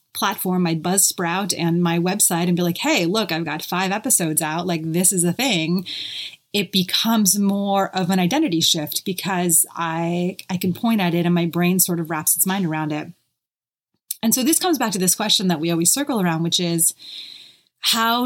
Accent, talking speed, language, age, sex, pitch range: American, 200 wpm, English, 30-49, female, 170-205 Hz